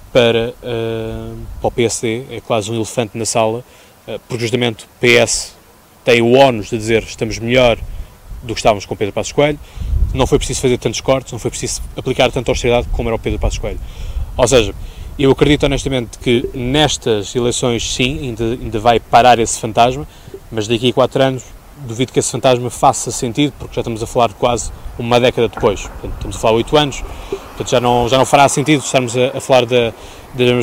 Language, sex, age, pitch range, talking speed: Portuguese, male, 20-39, 115-130 Hz, 205 wpm